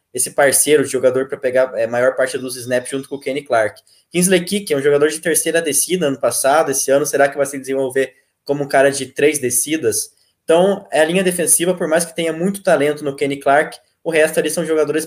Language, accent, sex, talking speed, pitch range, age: Portuguese, Brazilian, male, 225 wpm, 130-155 Hz, 20-39